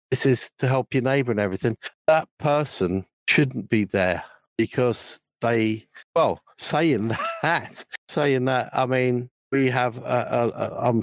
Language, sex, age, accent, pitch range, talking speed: English, male, 50-69, British, 115-145 Hz, 150 wpm